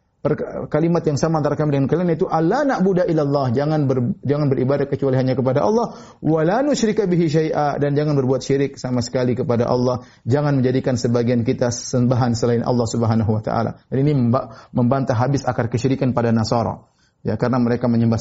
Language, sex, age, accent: Indonesian, male, 30-49, native